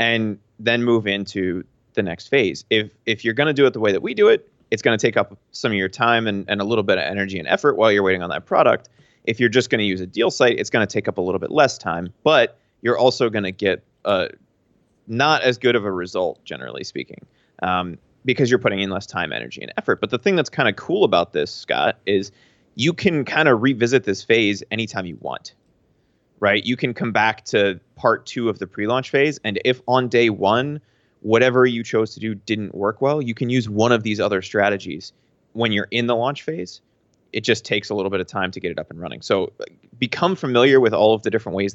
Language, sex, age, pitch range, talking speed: English, male, 30-49, 100-125 Hz, 245 wpm